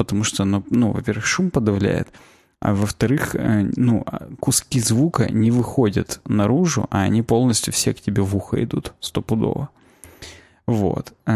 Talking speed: 135 wpm